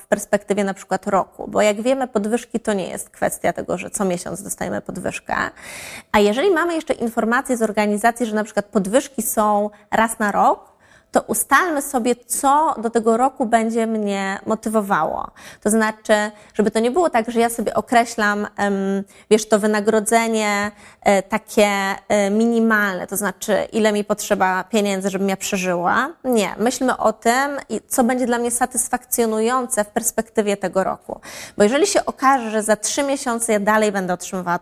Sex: female